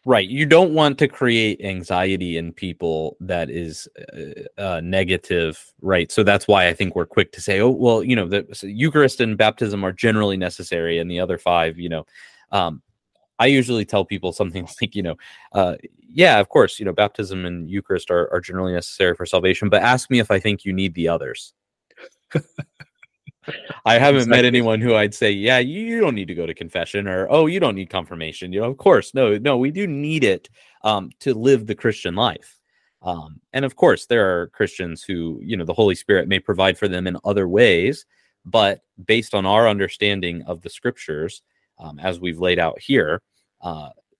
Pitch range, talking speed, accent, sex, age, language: 90-120 Hz, 200 wpm, American, male, 30-49, English